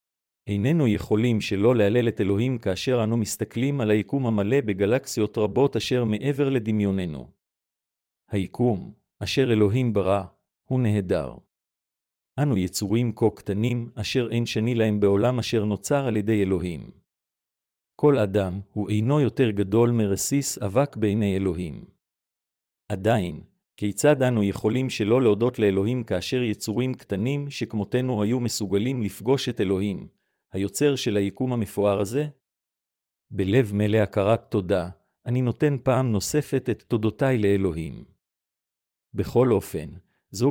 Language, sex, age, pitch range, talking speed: Hebrew, male, 50-69, 100-125 Hz, 120 wpm